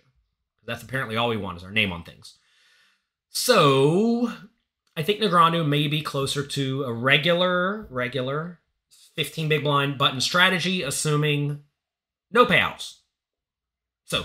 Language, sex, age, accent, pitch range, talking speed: English, male, 30-49, American, 110-165 Hz, 125 wpm